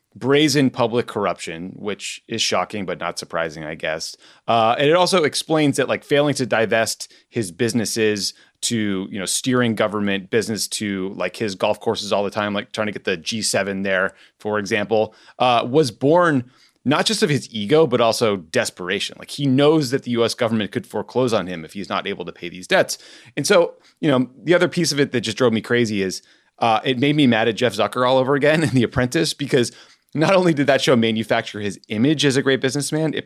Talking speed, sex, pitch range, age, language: 215 wpm, male, 105-140 Hz, 30-49, English